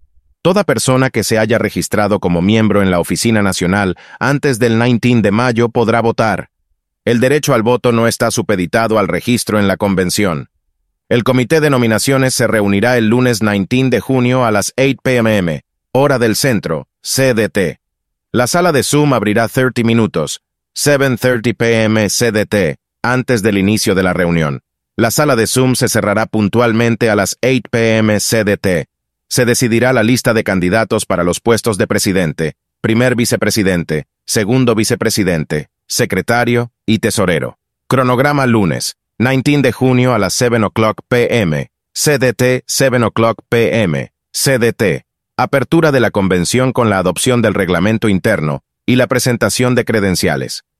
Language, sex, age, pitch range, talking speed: Spanish, male, 30-49, 100-125 Hz, 150 wpm